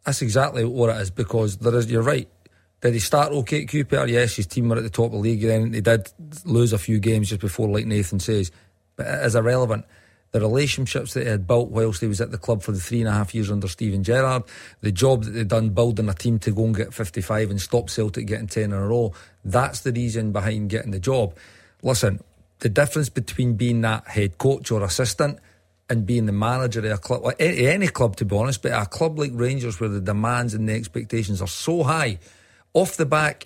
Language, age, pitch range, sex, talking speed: English, 40-59, 105-130 Hz, male, 240 wpm